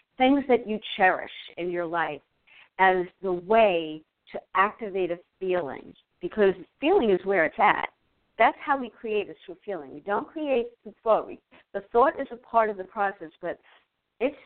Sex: female